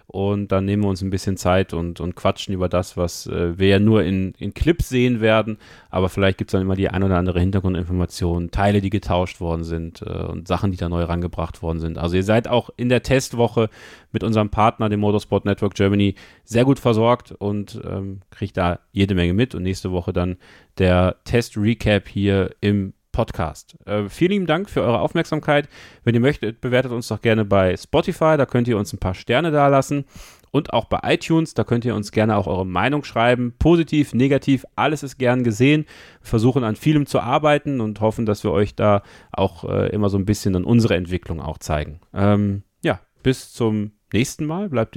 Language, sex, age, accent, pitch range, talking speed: German, male, 30-49, German, 95-120 Hz, 205 wpm